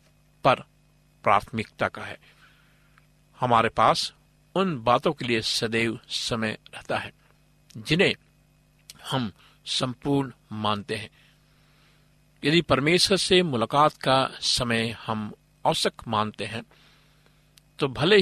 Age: 50-69